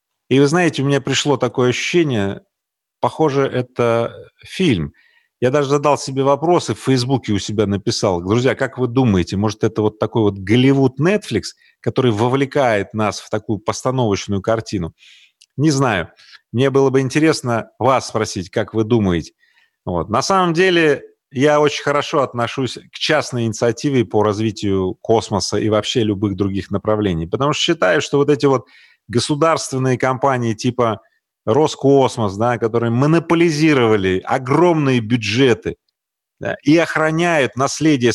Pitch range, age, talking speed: 110-145 Hz, 30-49, 135 wpm